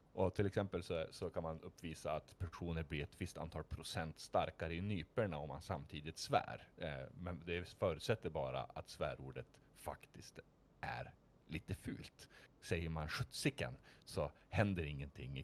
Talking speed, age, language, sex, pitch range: 150 wpm, 30-49, Swedish, male, 75-105 Hz